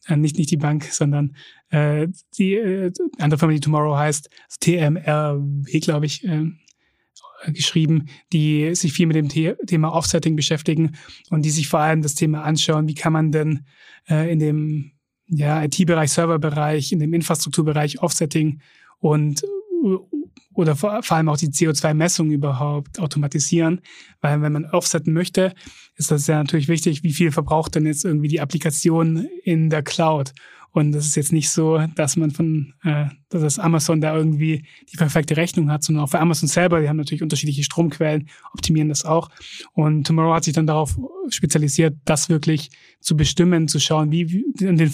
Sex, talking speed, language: male, 170 wpm, German